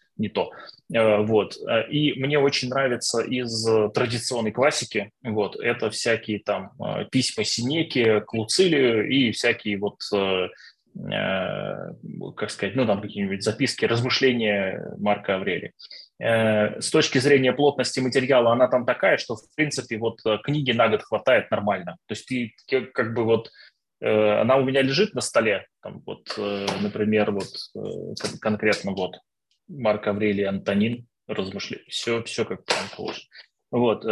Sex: male